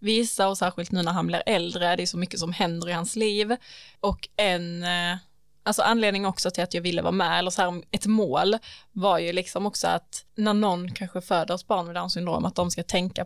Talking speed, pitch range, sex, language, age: 230 wpm, 175-210 Hz, female, Swedish, 20-39